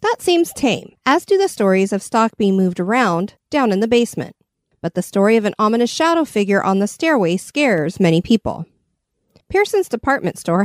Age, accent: 40-59, American